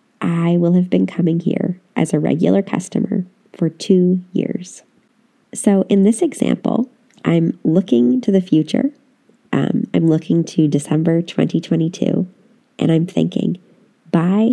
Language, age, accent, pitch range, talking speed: English, 30-49, American, 160-230 Hz, 130 wpm